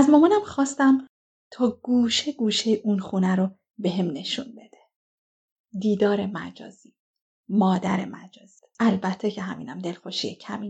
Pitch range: 195-235 Hz